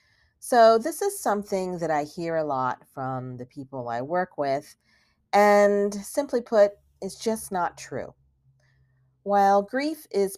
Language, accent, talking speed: English, American, 145 wpm